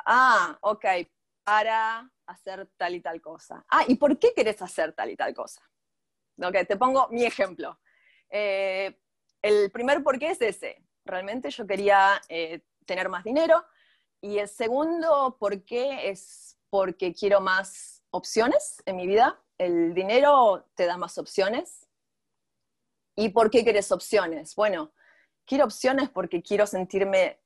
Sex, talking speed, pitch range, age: female, 145 wpm, 180-260 Hz, 30-49